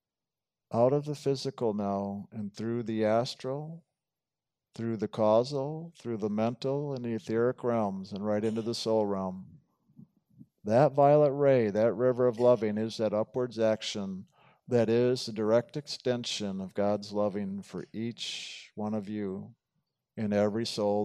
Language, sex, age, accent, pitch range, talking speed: English, male, 50-69, American, 105-130 Hz, 150 wpm